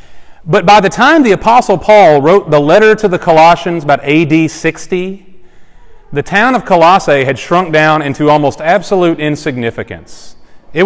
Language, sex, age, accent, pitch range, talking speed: English, male, 30-49, American, 155-200 Hz, 155 wpm